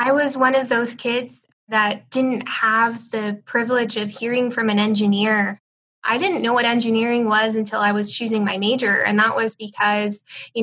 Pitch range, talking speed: 205-230 Hz, 185 wpm